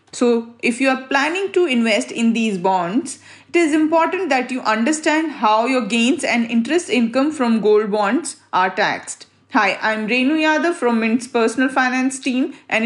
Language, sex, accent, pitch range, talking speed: English, female, Indian, 235-310 Hz, 175 wpm